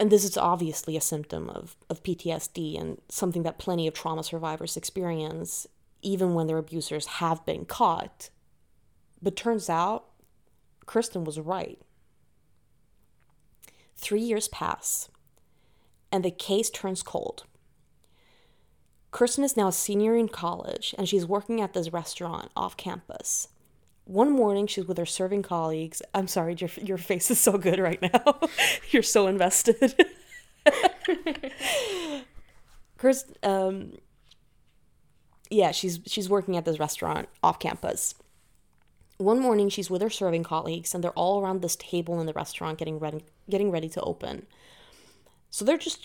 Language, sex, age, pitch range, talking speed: English, female, 20-39, 165-210 Hz, 140 wpm